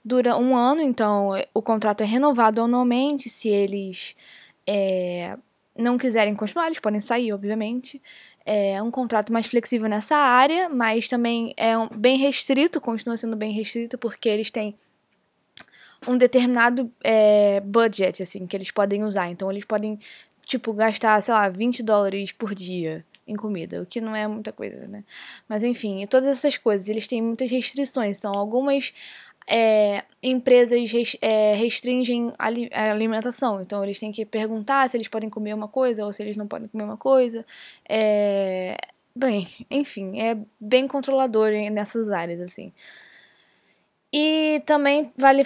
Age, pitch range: 10-29, 205-250 Hz